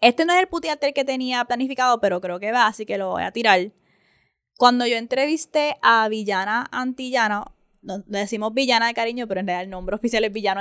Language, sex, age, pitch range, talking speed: Spanish, female, 10-29, 205-255 Hz, 215 wpm